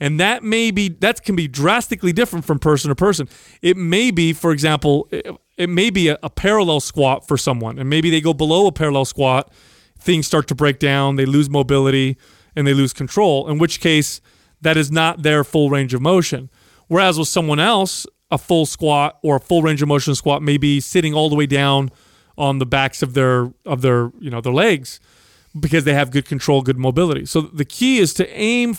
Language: English